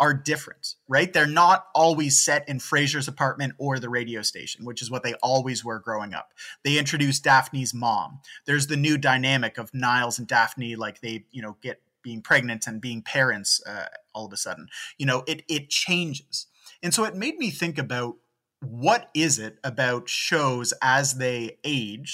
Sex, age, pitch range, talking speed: male, 30-49, 120-155 Hz, 185 wpm